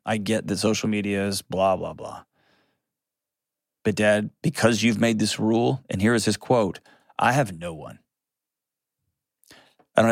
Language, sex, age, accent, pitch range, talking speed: English, male, 30-49, American, 100-120 Hz, 160 wpm